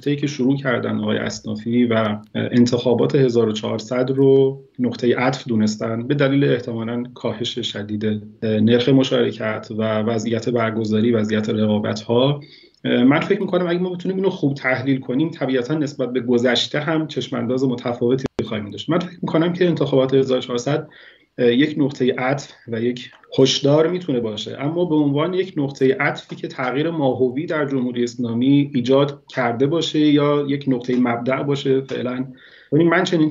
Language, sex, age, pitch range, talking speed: Persian, male, 30-49, 120-150 Hz, 150 wpm